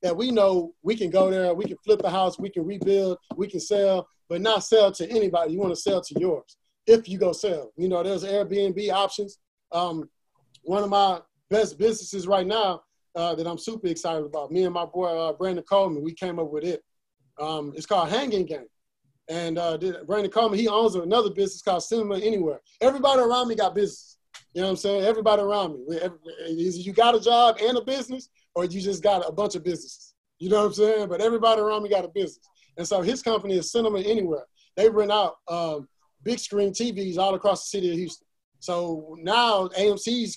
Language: English